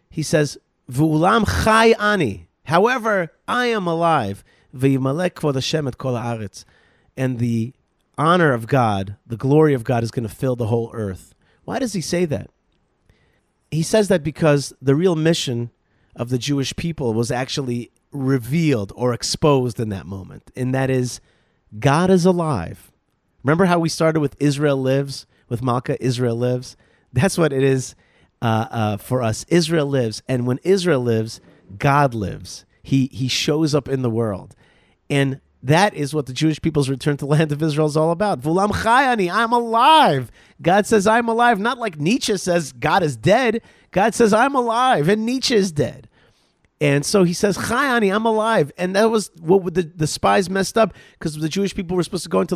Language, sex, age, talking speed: English, male, 30-49, 175 wpm